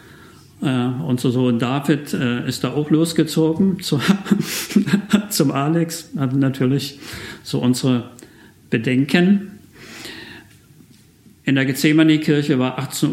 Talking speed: 100 wpm